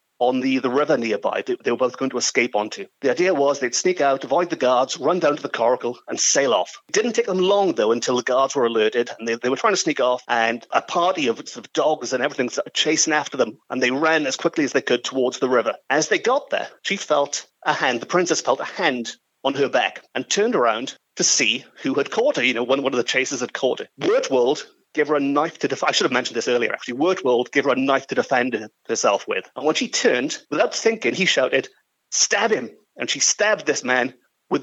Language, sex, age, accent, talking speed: English, male, 30-49, British, 255 wpm